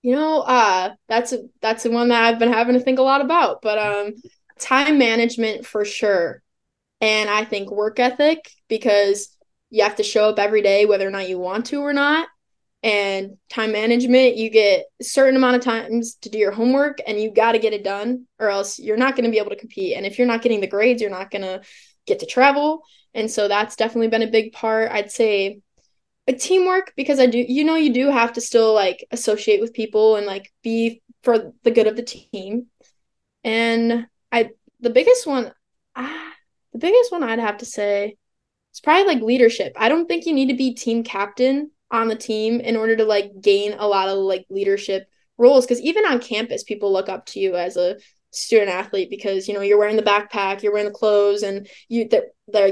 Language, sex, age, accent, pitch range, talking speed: English, female, 10-29, American, 205-250 Hz, 220 wpm